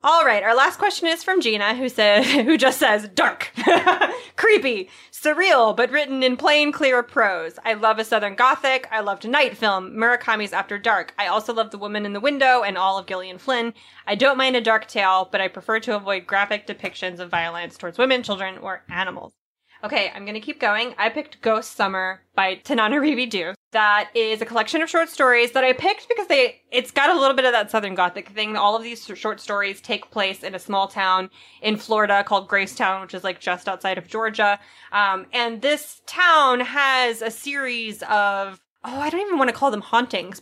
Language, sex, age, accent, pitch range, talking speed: English, female, 20-39, American, 200-260 Hz, 210 wpm